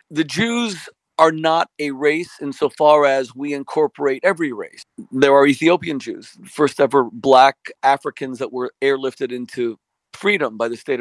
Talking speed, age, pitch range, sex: 155 wpm, 50-69, 135-170 Hz, male